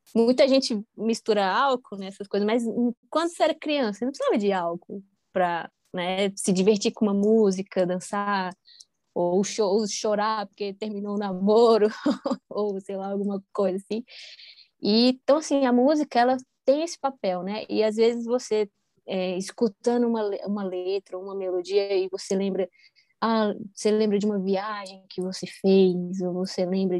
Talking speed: 170 wpm